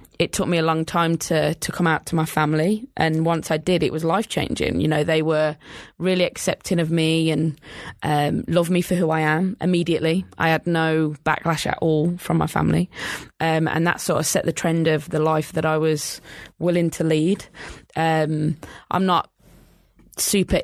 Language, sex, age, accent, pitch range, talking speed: English, female, 20-39, British, 160-175 Hz, 200 wpm